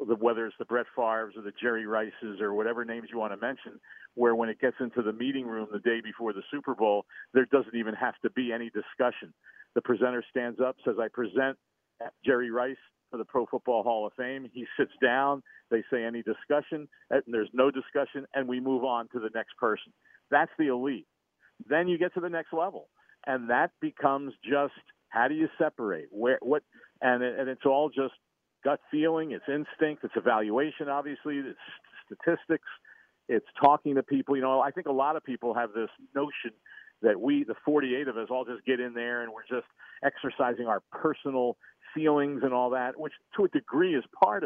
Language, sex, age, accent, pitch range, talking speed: English, male, 50-69, American, 120-150 Hz, 205 wpm